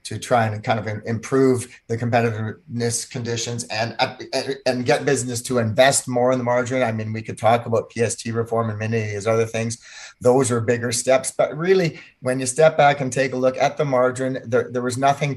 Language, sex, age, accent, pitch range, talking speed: English, male, 30-49, American, 115-130 Hz, 210 wpm